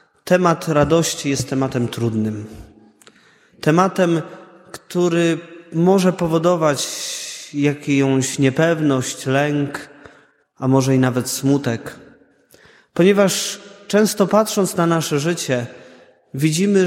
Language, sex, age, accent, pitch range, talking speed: Polish, male, 20-39, native, 130-170 Hz, 85 wpm